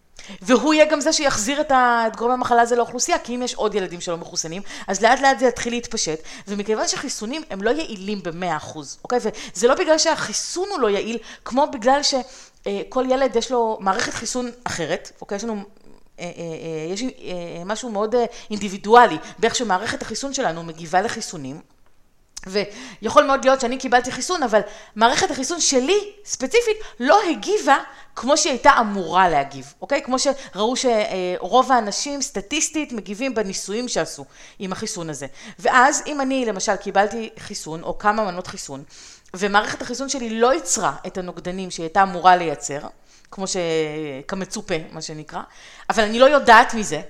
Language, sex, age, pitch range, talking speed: Hebrew, female, 30-49, 185-255 Hz, 160 wpm